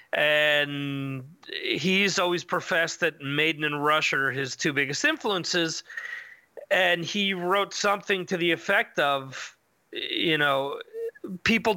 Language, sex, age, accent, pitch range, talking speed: English, male, 30-49, American, 150-200 Hz, 120 wpm